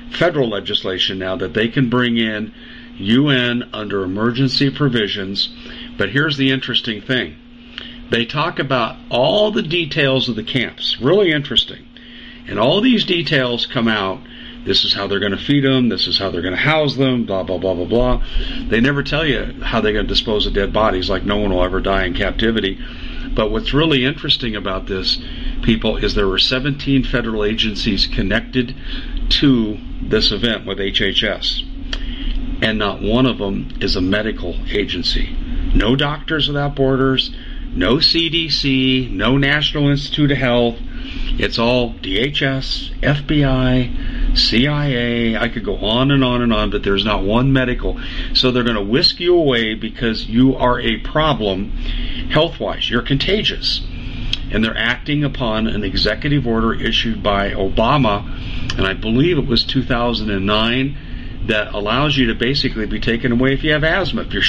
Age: 50-69